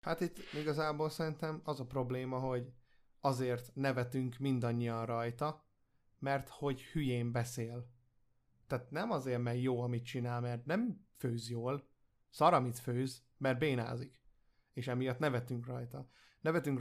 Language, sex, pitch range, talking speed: Hungarian, male, 120-145 Hz, 130 wpm